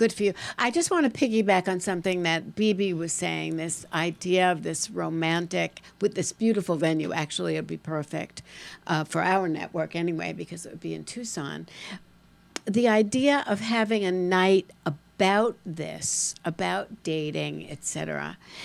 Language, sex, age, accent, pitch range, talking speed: English, female, 60-79, American, 170-215 Hz, 165 wpm